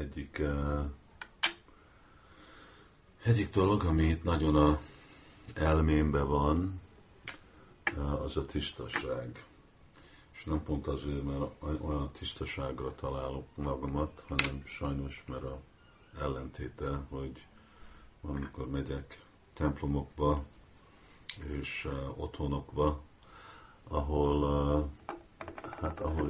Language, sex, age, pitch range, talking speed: Hungarian, male, 50-69, 70-75 Hz, 90 wpm